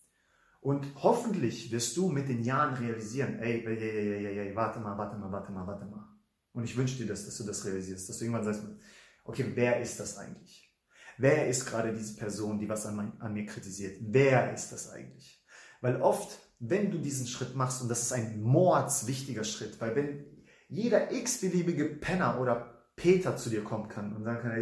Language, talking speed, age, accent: English, 195 wpm, 30-49, German